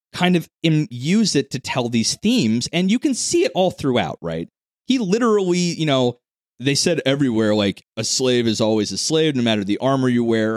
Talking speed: 210 wpm